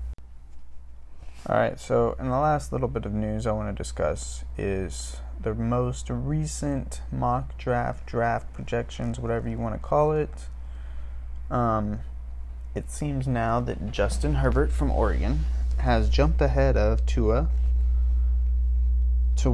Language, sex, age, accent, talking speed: English, male, 20-39, American, 130 wpm